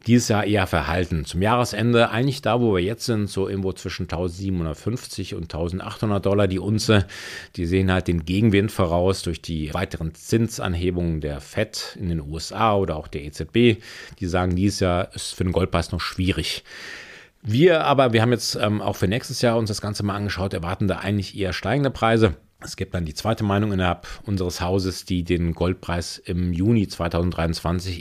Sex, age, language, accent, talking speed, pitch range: male, 40-59, German, German, 180 wpm, 85-105 Hz